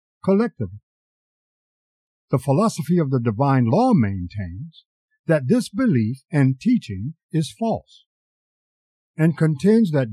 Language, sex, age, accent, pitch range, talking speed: English, male, 60-79, American, 110-185 Hz, 105 wpm